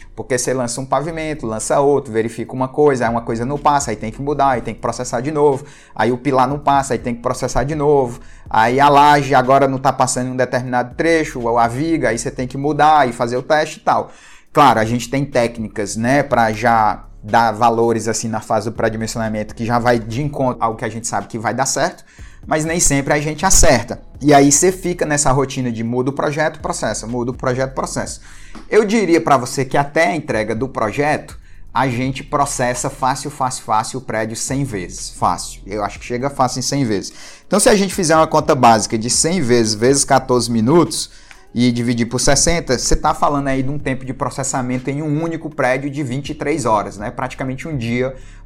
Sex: male